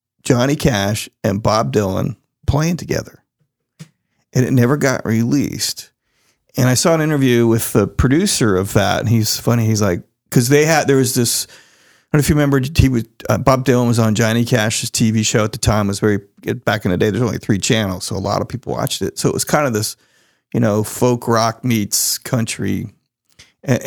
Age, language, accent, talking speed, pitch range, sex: 40-59, English, American, 215 wpm, 110-135 Hz, male